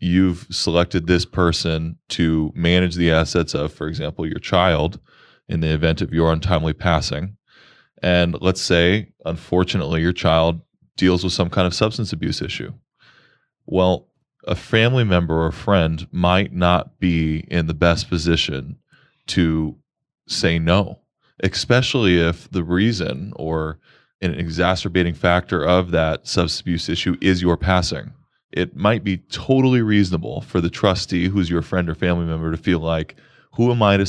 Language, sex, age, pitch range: English, male, 20-39, 85-105 Hz